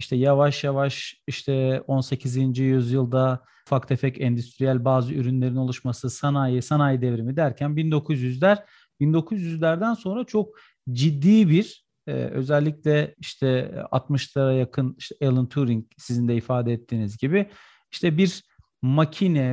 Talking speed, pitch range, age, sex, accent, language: 115 wpm, 130-165 Hz, 40-59, male, native, Turkish